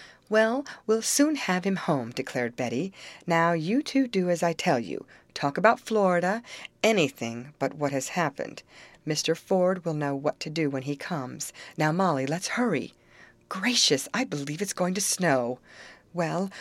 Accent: American